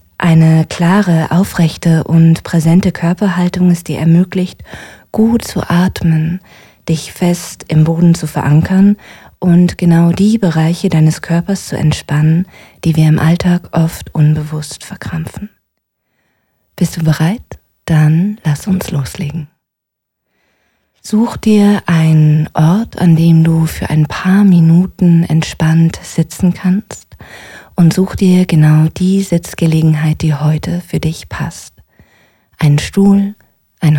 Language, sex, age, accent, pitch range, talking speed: German, female, 20-39, German, 155-180 Hz, 120 wpm